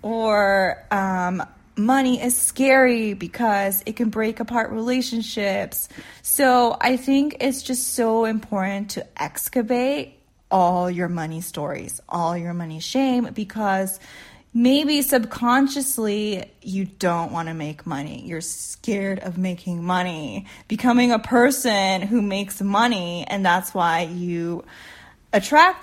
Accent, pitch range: American, 165-220 Hz